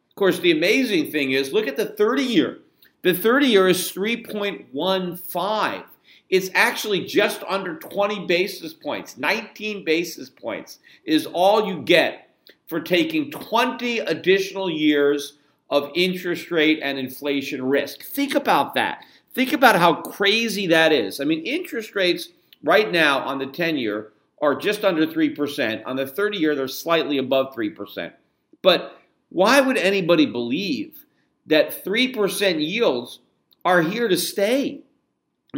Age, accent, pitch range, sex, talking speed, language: 50-69, American, 145-210 Hz, male, 135 wpm, English